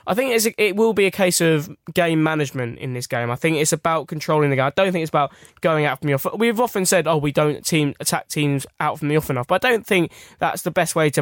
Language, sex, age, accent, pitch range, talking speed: English, male, 10-29, British, 145-170 Hz, 290 wpm